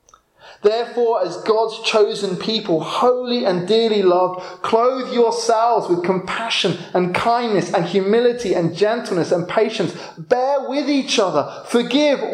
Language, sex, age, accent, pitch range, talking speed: English, male, 30-49, British, 125-205 Hz, 125 wpm